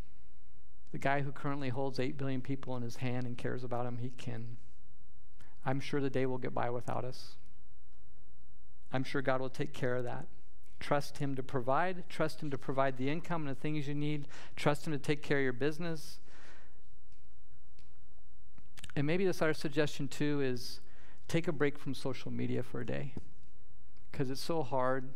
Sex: male